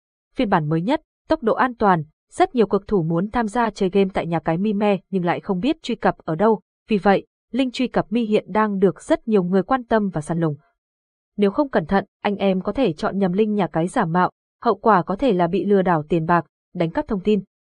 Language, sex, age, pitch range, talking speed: Vietnamese, female, 20-39, 175-230 Hz, 260 wpm